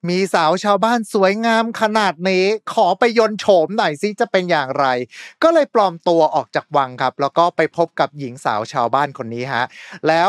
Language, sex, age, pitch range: Thai, male, 20-39, 155-215 Hz